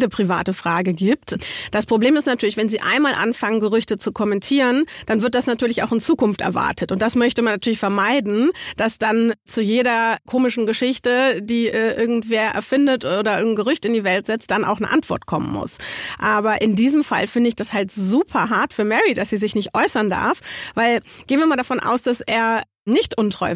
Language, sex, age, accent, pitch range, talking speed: German, female, 40-59, German, 220-275 Hz, 200 wpm